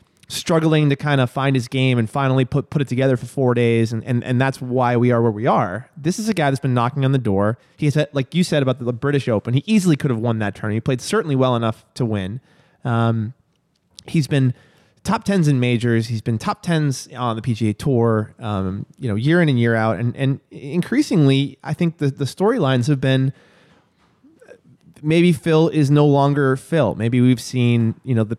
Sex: male